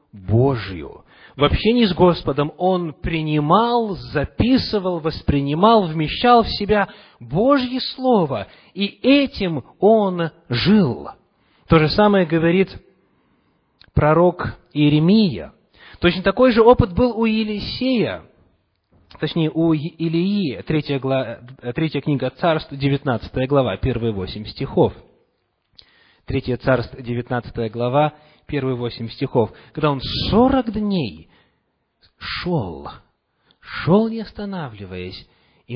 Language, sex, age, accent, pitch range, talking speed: Russian, male, 30-49, native, 125-185 Hz, 100 wpm